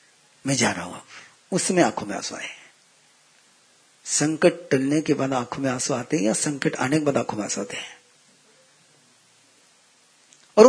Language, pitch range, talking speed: Hindi, 140-215 Hz, 155 wpm